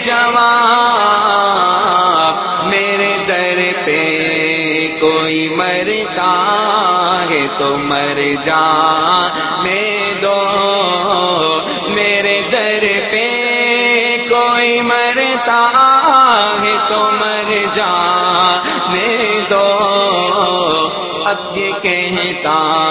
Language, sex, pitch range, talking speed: Hindi, male, 175-240 Hz, 65 wpm